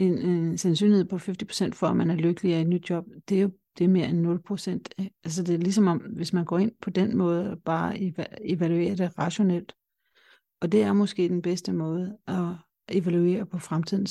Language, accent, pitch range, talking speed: Danish, native, 175-200 Hz, 220 wpm